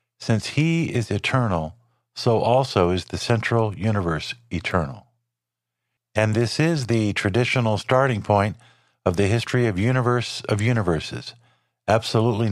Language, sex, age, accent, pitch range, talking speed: English, male, 50-69, American, 100-120 Hz, 125 wpm